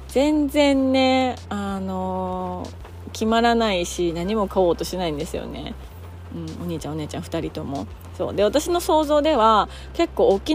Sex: female